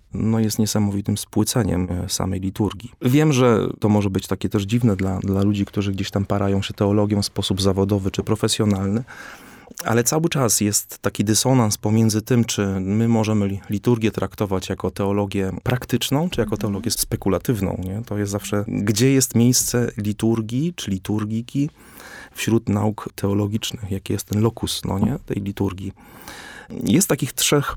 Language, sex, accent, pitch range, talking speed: Polish, male, native, 100-110 Hz, 155 wpm